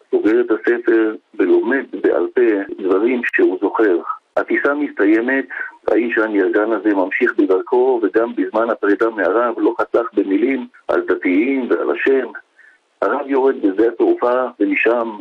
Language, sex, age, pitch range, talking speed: Hebrew, male, 50-69, 320-395 Hz, 125 wpm